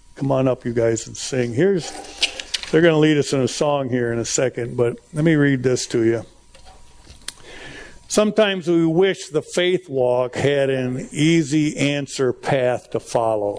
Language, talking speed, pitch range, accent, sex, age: English, 175 wpm, 120-150 Hz, American, male, 60-79